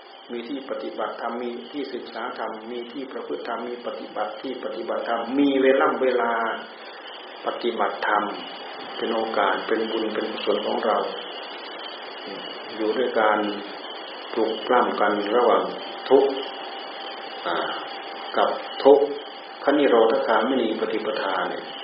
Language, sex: Thai, male